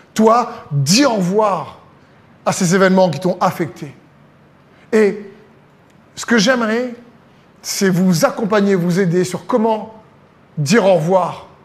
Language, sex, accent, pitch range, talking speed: French, male, French, 180-215 Hz, 125 wpm